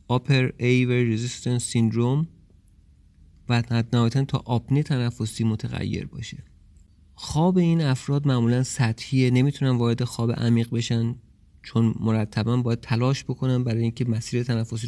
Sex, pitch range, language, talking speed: male, 105-125 Hz, Persian, 120 wpm